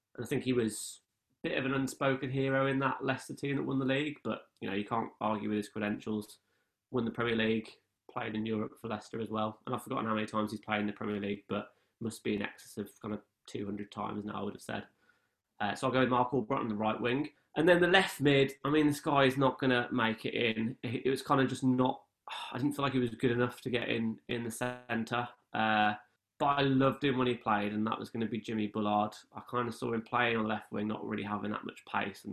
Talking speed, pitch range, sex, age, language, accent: 265 wpm, 105-130 Hz, male, 20-39, English, British